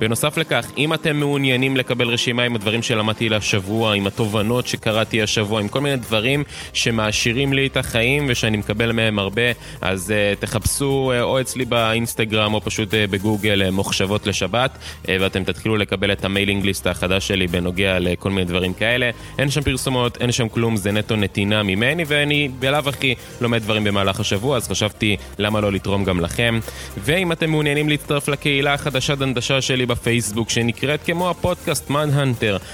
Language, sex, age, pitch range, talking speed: Hebrew, male, 20-39, 105-135 Hz, 155 wpm